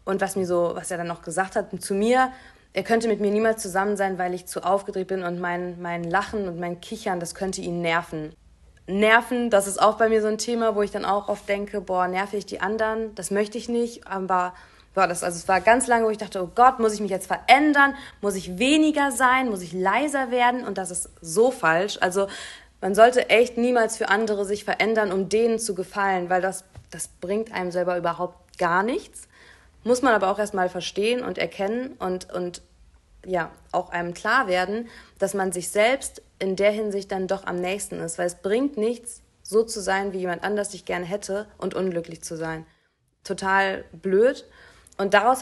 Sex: female